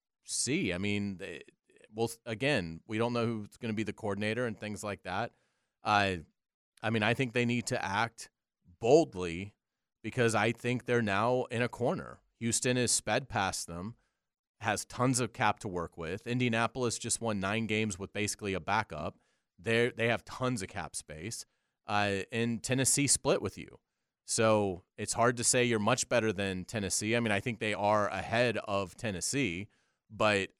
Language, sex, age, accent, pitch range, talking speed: English, male, 30-49, American, 100-120 Hz, 180 wpm